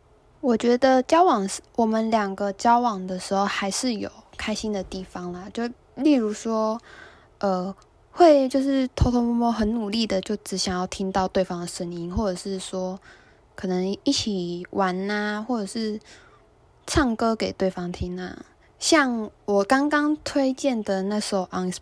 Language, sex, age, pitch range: Chinese, female, 10-29, 190-230 Hz